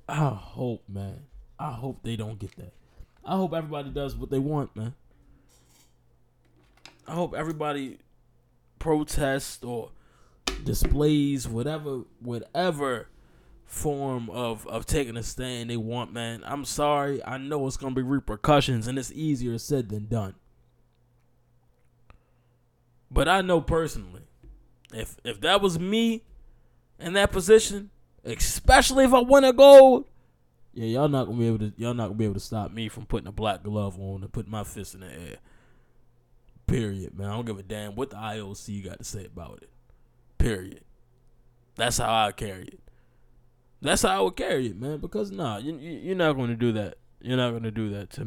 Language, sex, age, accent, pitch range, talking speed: English, male, 20-39, American, 110-140 Hz, 170 wpm